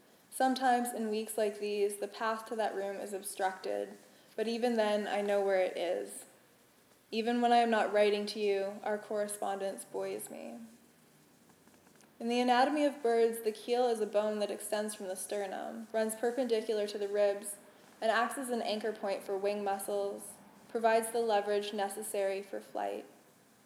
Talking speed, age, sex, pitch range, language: 170 wpm, 20-39, female, 205-230 Hz, English